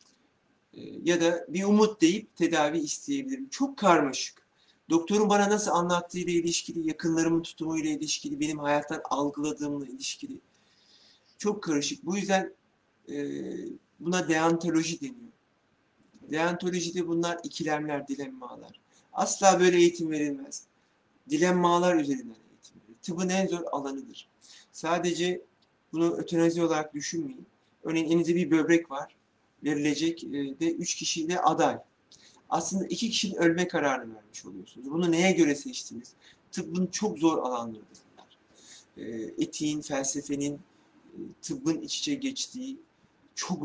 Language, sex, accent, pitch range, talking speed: Turkish, male, native, 145-195 Hz, 115 wpm